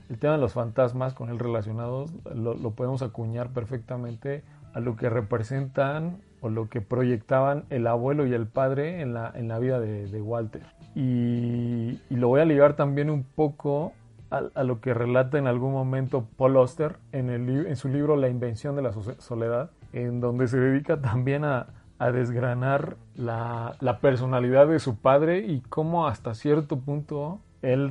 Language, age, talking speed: Spanish, 40-59, 175 wpm